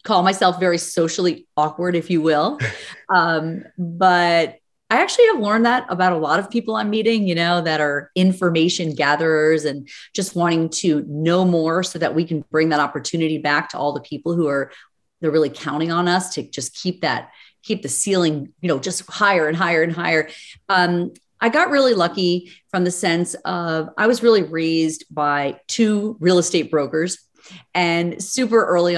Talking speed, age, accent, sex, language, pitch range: 185 wpm, 30-49, American, female, English, 155-200 Hz